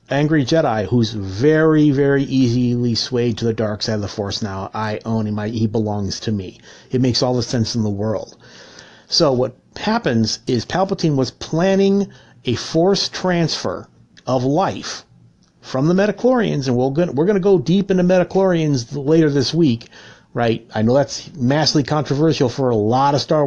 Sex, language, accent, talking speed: male, English, American, 175 wpm